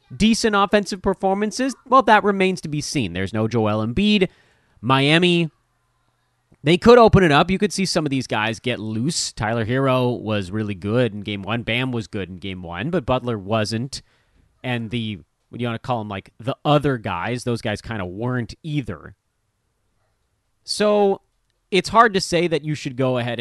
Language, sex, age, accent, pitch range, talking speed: English, male, 30-49, American, 105-165 Hz, 190 wpm